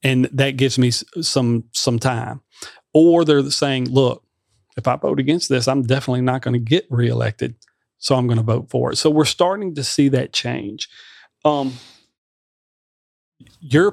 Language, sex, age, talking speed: English, male, 40-59, 170 wpm